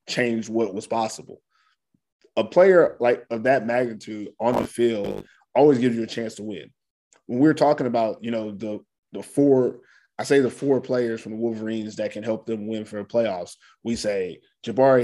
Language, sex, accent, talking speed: English, male, American, 190 wpm